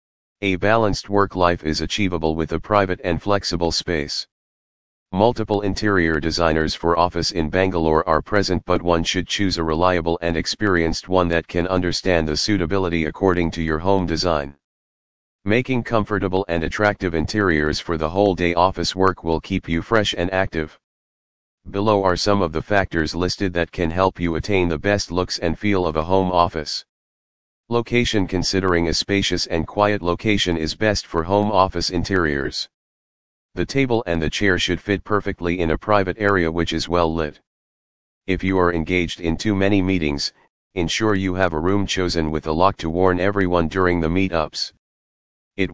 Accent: American